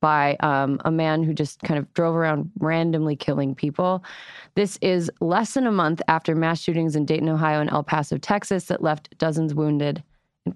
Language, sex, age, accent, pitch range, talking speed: English, female, 20-39, American, 155-195 Hz, 195 wpm